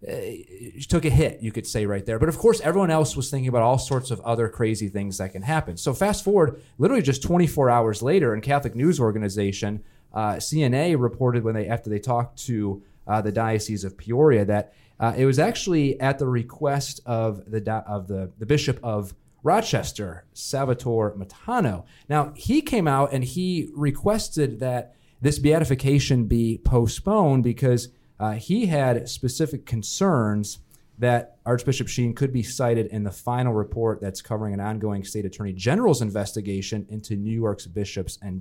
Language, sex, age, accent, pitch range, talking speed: English, male, 30-49, American, 110-140 Hz, 175 wpm